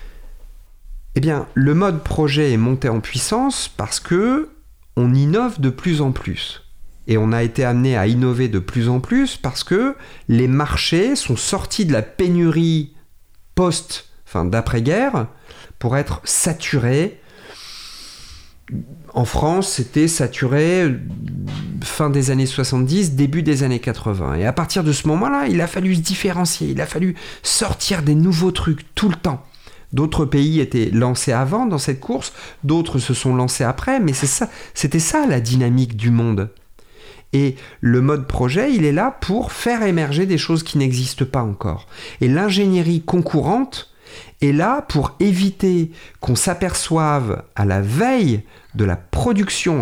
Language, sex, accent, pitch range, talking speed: French, male, French, 120-175 Hz, 155 wpm